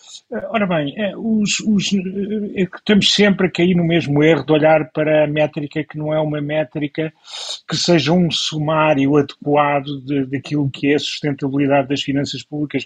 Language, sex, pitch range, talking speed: Portuguese, male, 115-155 Hz, 150 wpm